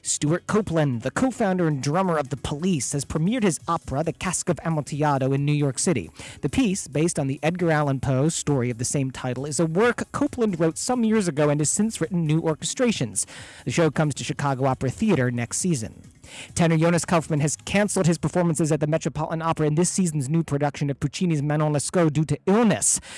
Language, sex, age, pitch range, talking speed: English, male, 40-59, 140-175 Hz, 205 wpm